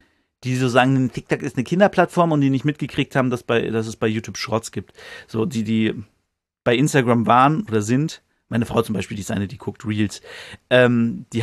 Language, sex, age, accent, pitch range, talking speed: German, male, 40-59, German, 110-145 Hz, 210 wpm